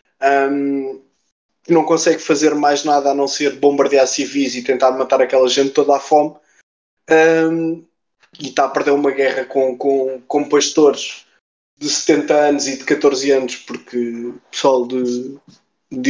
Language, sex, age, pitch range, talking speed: Portuguese, male, 20-39, 130-150 Hz, 160 wpm